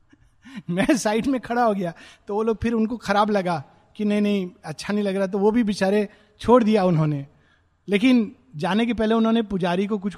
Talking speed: 205 wpm